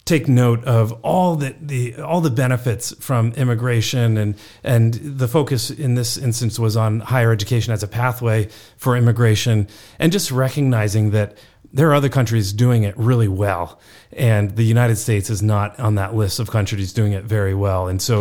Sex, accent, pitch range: male, American, 110-130 Hz